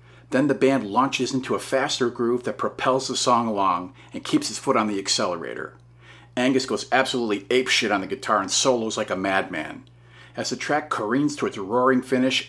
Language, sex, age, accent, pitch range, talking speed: English, male, 40-59, American, 105-135 Hz, 190 wpm